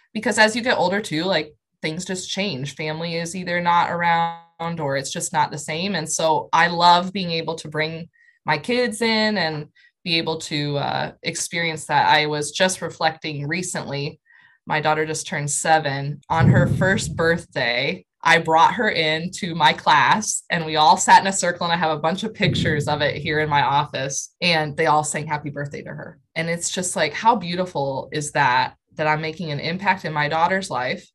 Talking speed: 200 wpm